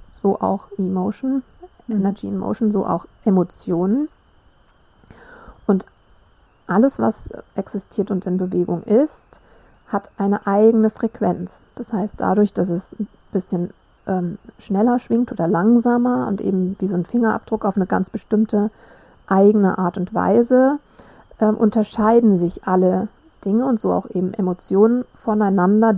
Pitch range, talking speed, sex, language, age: 185-230 Hz, 135 wpm, female, German, 50-69